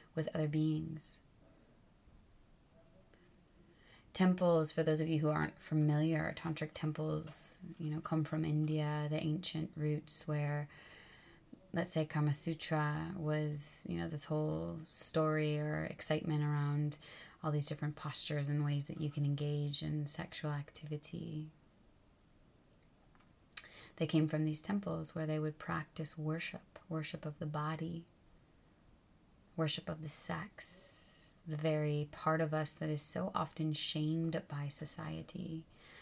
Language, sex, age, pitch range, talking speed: English, female, 20-39, 150-160 Hz, 130 wpm